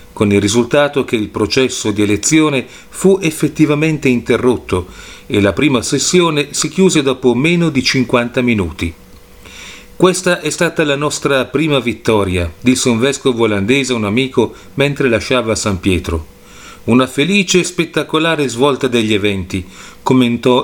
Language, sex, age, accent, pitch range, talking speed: Italian, male, 40-59, native, 105-150 Hz, 140 wpm